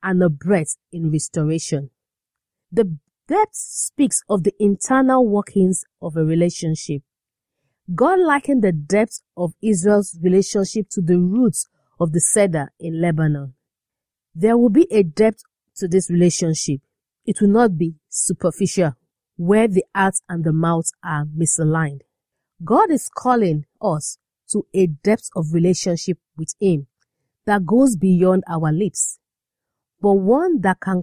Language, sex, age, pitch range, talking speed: English, female, 40-59, 160-210 Hz, 135 wpm